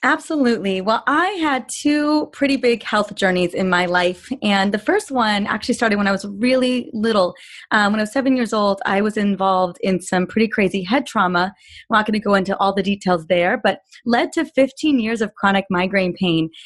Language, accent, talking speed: English, American, 210 wpm